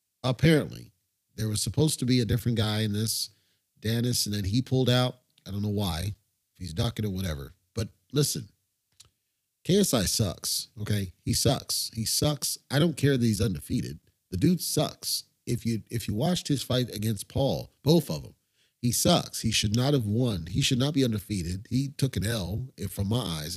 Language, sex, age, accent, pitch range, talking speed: English, male, 40-59, American, 105-140 Hz, 190 wpm